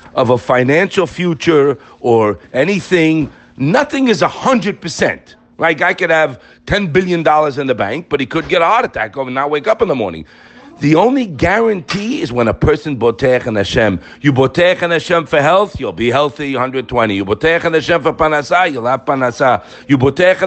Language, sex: English, male